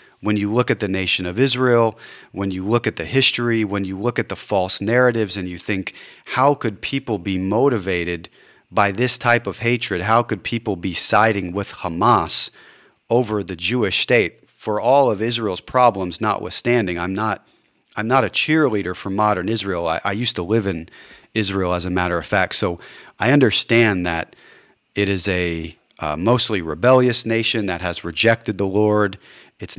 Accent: American